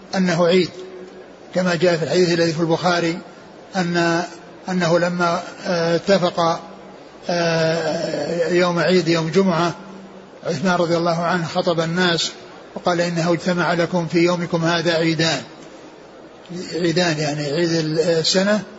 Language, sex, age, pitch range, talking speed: Arabic, male, 60-79, 170-190 Hz, 110 wpm